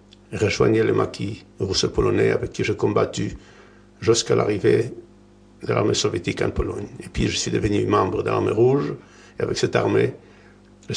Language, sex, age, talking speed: French, male, 60-79, 165 wpm